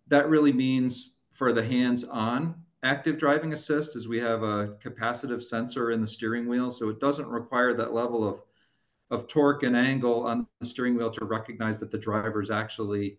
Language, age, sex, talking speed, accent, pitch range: English, 40-59, male, 180 wpm, American, 110-140 Hz